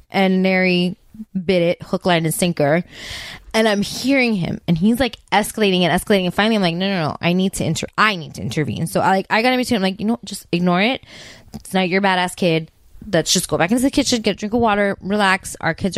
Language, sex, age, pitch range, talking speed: English, female, 20-39, 170-230 Hz, 250 wpm